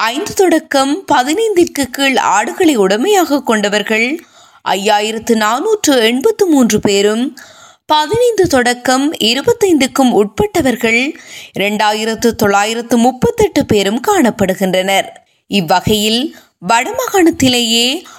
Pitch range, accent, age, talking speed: 215-330 Hz, native, 20-39, 65 wpm